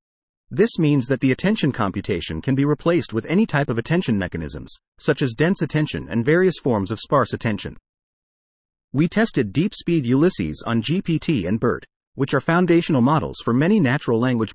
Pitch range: 110-165 Hz